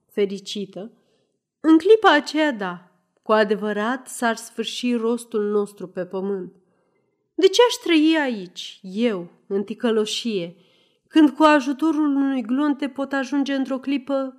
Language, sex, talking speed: Romanian, female, 125 wpm